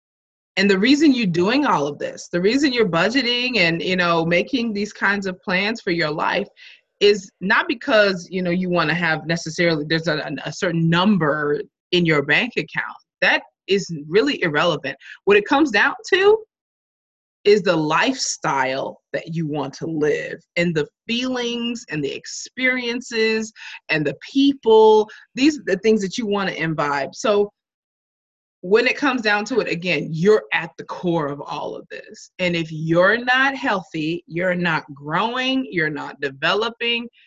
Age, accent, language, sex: 20-39, American, English, female